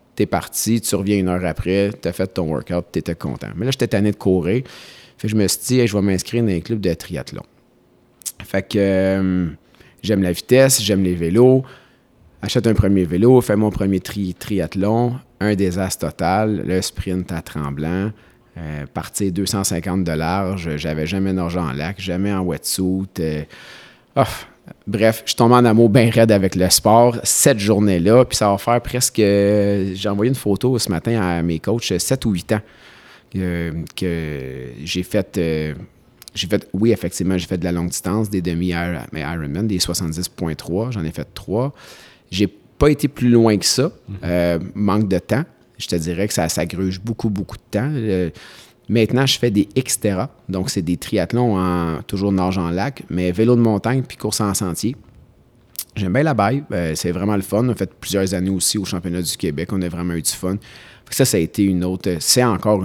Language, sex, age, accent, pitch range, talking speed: French, male, 30-49, Canadian, 90-110 Hz, 195 wpm